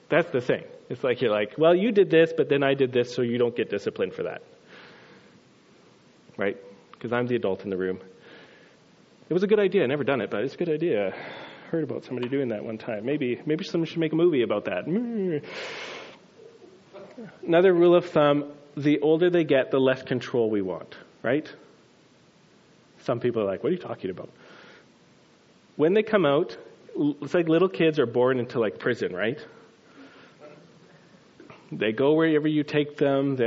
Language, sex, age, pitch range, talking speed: English, male, 30-49, 125-170 Hz, 190 wpm